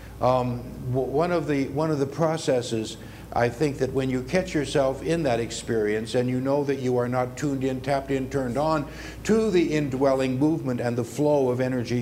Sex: male